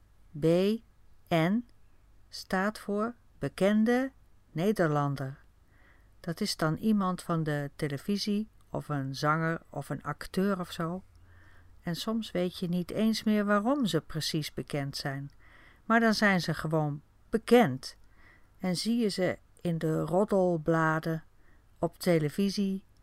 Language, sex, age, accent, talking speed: Dutch, female, 50-69, Dutch, 120 wpm